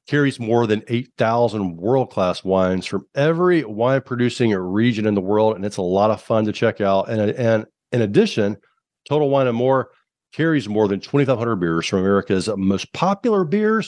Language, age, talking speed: English, 50-69, 170 wpm